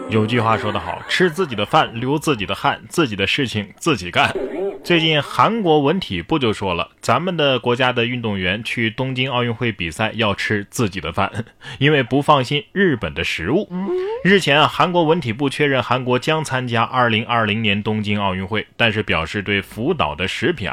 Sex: male